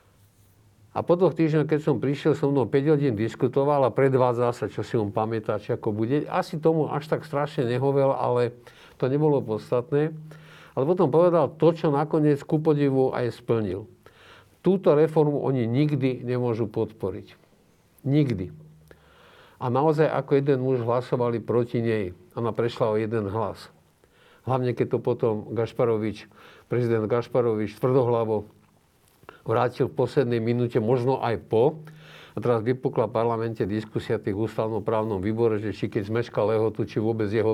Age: 50-69